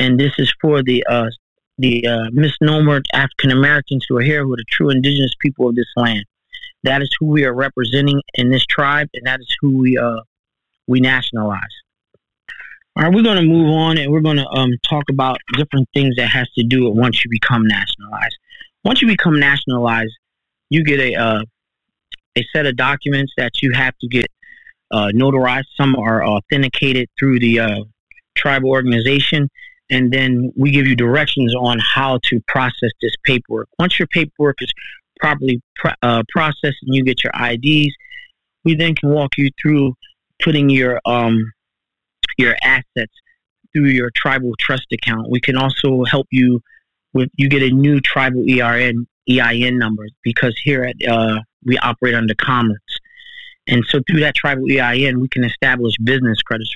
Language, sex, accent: English, male, American